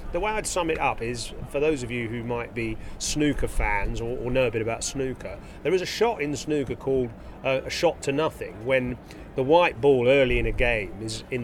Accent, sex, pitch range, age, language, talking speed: British, male, 115-140 Hz, 40-59, English, 245 wpm